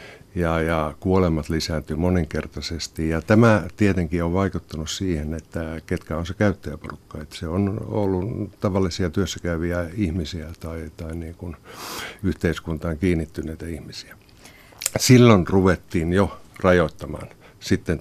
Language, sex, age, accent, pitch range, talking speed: Finnish, male, 60-79, native, 80-95 Hz, 115 wpm